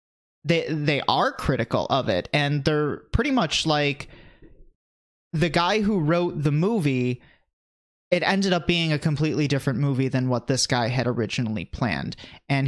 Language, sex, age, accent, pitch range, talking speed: English, male, 30-49, American, 130-160 Hz, 155 wpm